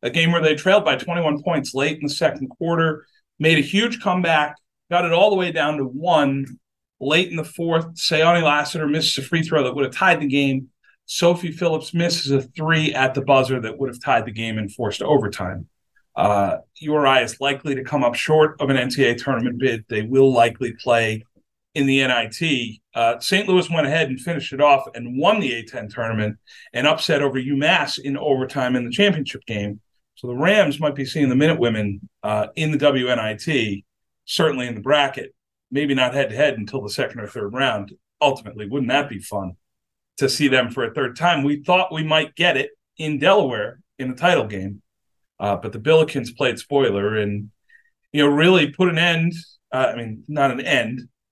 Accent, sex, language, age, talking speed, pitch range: American, male, English, 40-59, 200 wpm, 120-160 Hz